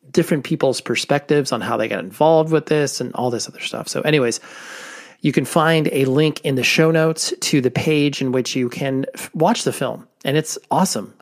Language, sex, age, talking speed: English, male, 30-49, 215 wpm